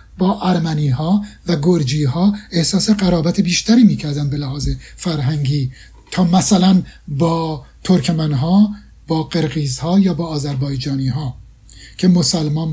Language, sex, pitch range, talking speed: Persian, male, 150-190 Hz, 125 wpm